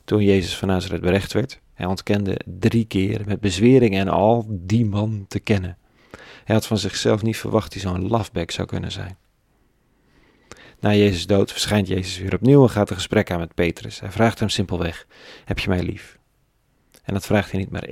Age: 40-59